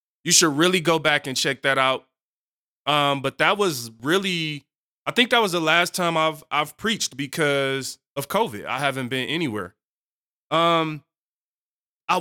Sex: male